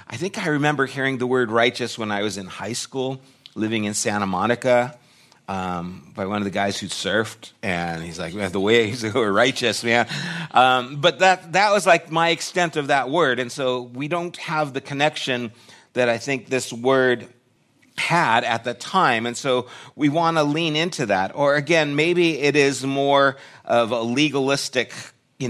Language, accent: English, American